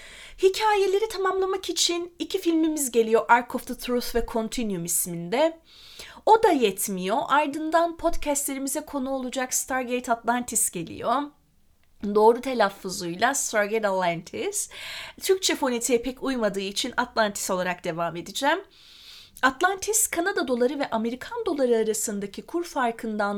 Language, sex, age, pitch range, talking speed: Turkish, female, 30-49, 200-300 Hz, 115 wpm